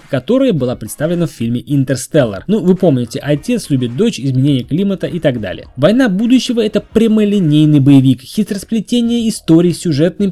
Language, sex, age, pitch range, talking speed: Russian, male, 20-39, 140-200 Hz, 155 wpm